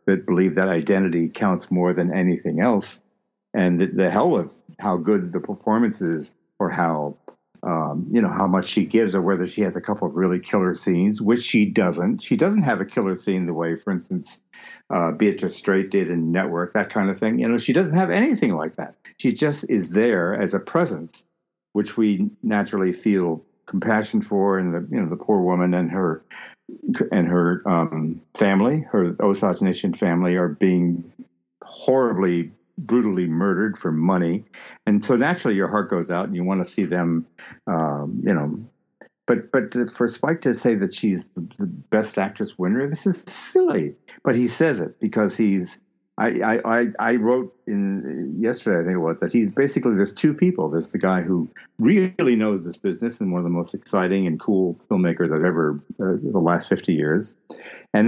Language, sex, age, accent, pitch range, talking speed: English, male, 60-79, American, 90-120 Hz, 190 wpm